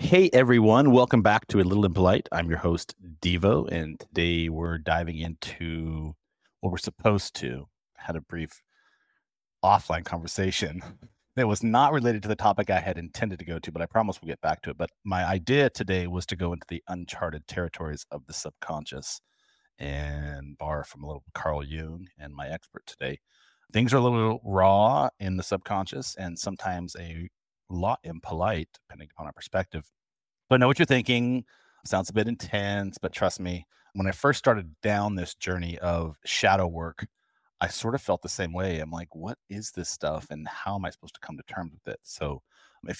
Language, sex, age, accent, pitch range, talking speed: English, male, 40-59, American, 85-105 Hz, 190 wpm